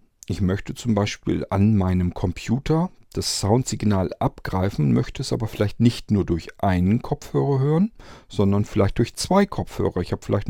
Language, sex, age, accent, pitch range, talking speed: German, male, 40-59, German, 95-120 Hz, 160 wpm